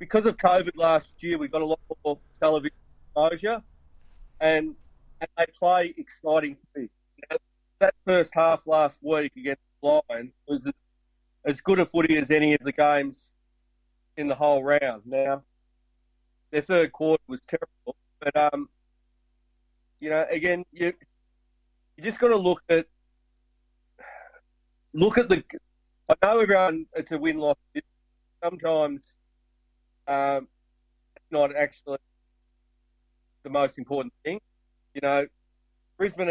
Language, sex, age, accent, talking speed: English, male, 30-49, Australian, 130 wpm